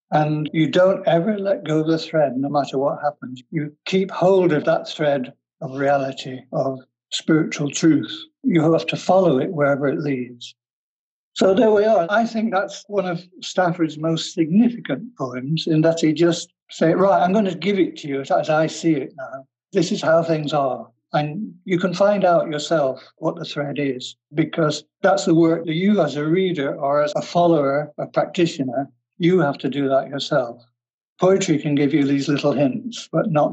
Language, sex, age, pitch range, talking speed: English, male, 60-79, 140-180 Hz, 195 wpm